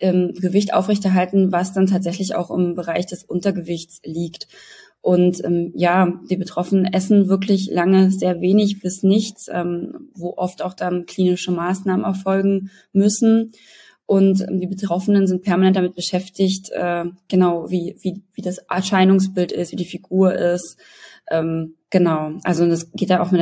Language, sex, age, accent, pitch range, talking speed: German, female, 20-39, German, 170-190 Hz, 155 wpm